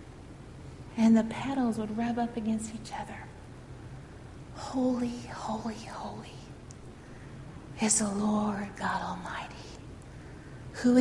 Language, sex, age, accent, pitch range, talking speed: English, female, 40-59, American, 195-225 Hz, 100 wpm